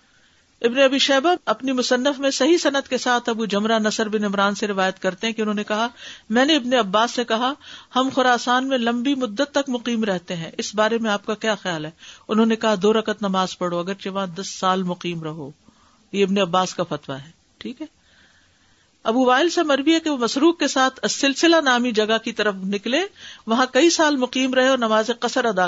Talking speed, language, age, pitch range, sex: 215 wpm, Urdu, 50-69, 200-255 Hz, female